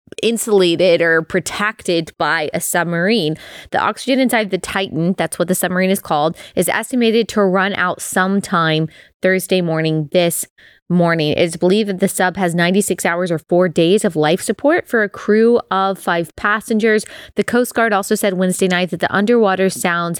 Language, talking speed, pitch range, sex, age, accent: English, 170 wpm, 175-210 Hz, female, 20-39, American